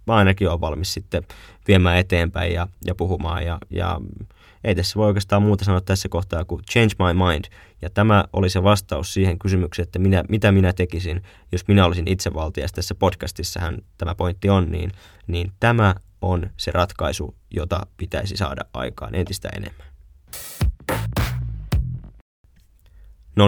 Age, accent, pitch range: 20-39, native, 90-105 Hz